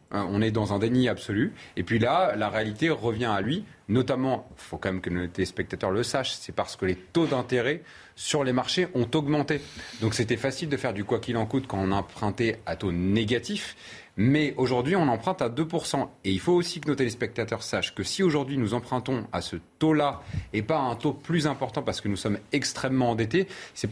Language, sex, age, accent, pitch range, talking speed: French, male, 30-49, French, 110-155 Hz, 220 wpm